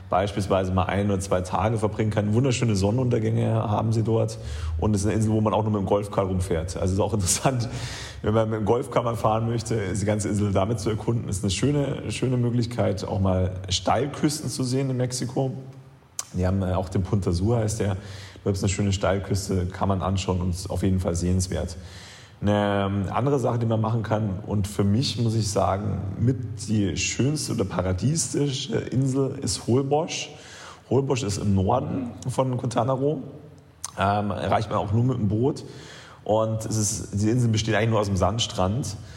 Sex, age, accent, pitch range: male, 30-49, German, 100-120 Hz